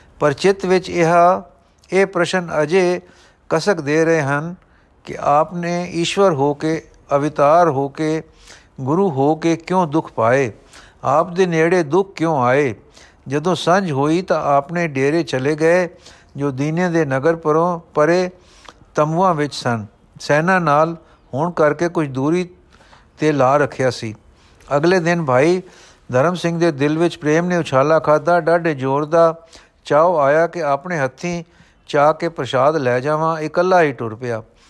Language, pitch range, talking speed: Punjabi, 140-170 Hz, 150 wpm